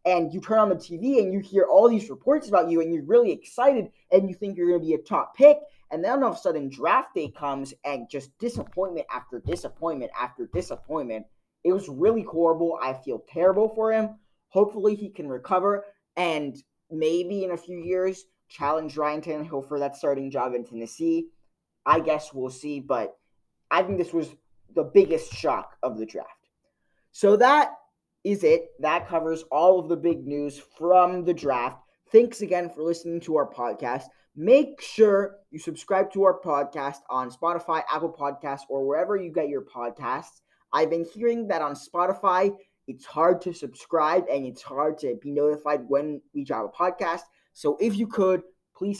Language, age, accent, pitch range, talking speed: English, 20-39, American, 145-195 Hz, 185 wpm